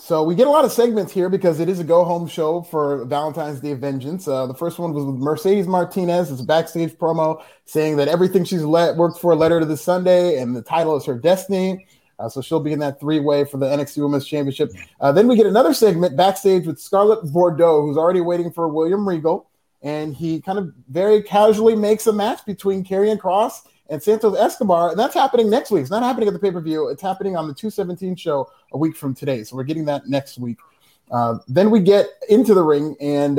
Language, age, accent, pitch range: English, 30-49, American, 145-200 Hz